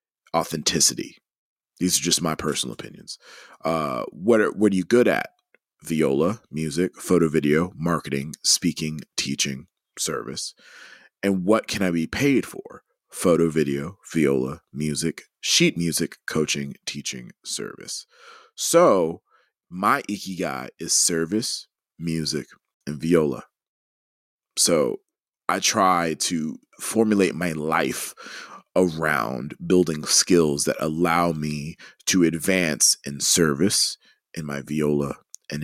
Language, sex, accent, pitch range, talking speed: English, male, American, 75-95 Hz, 115 wpm